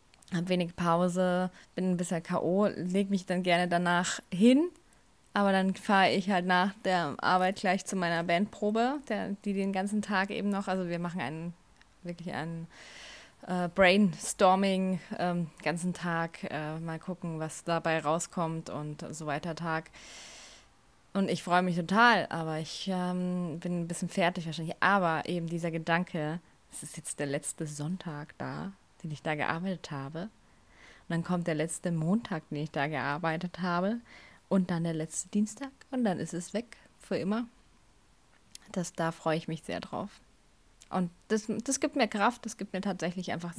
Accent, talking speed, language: German, 170 wpm, German